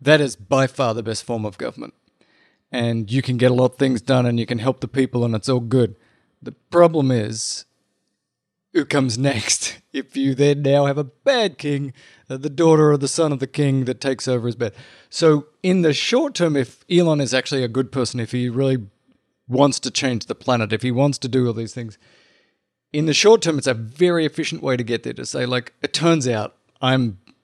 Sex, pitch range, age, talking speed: male, 115-135 Hz, 30-49, 225 wpm